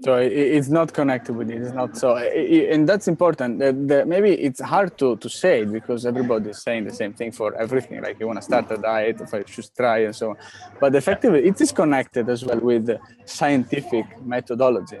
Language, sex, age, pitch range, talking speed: English, male, 20-39, 120-150 Hz, 210 wpm